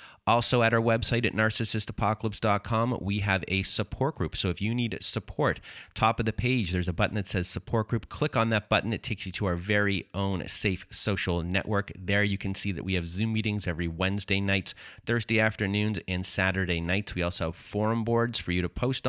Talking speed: 210 wpm